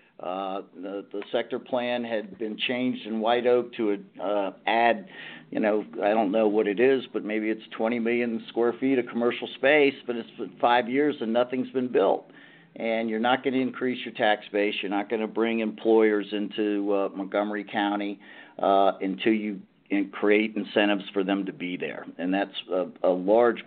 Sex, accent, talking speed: male, American, 190 wpm